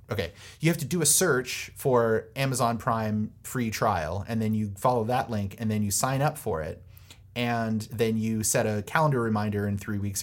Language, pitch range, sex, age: English, 100-125 Hz, male, 30-49